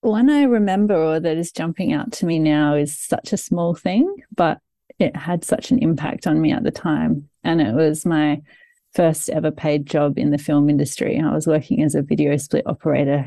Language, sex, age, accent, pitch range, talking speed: English, female, 30-49, Australian, 150-175 Hz, 215 wpm